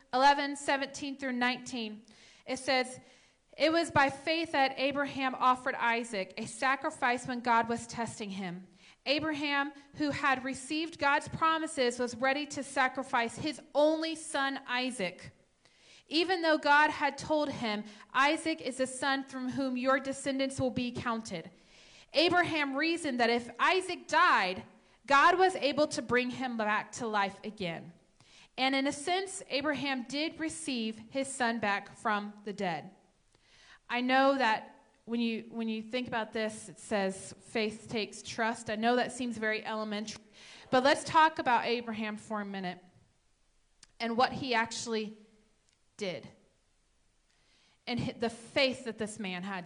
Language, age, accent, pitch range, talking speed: English, 30-49, American, 220-280 Hz, 145 wpm